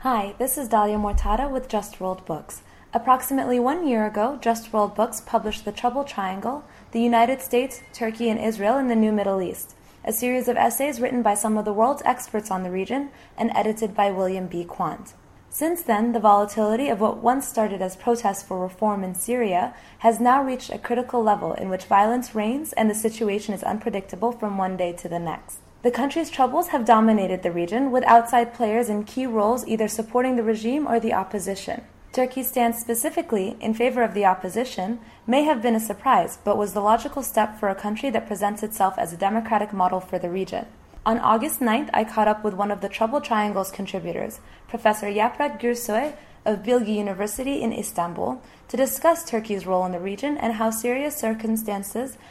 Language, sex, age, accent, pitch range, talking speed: English, female, 20-39, American, 205-245 Hz, 195 wpm